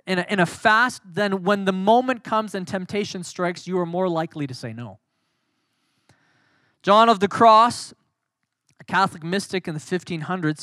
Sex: male